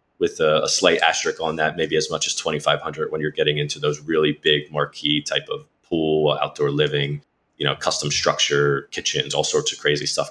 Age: 20-39